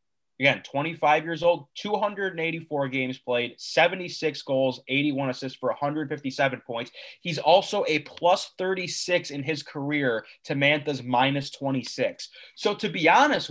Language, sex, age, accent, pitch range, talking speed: English, male, 20-39, American, 135-170 Hz, 135 wpm